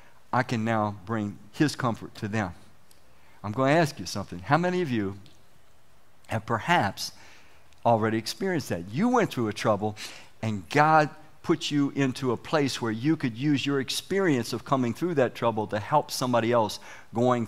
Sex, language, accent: male, English, American